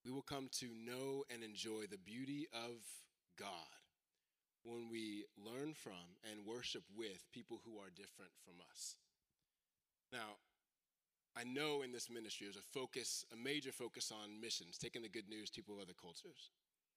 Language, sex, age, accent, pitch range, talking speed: English, male, 20-39, American, 115-145 Hz, 165 wpm